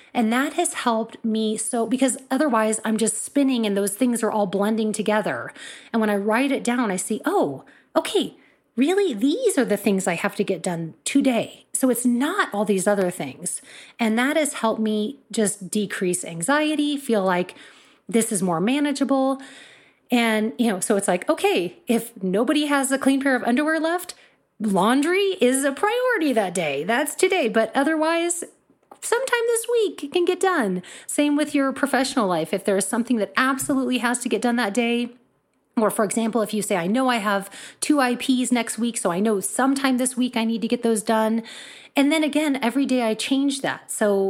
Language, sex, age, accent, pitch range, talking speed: English, female, 30-49, American, 210-275 Hz, 195 wpm